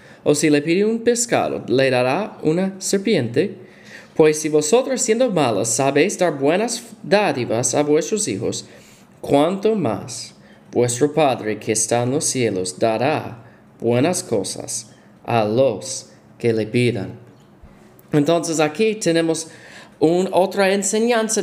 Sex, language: male, Spanish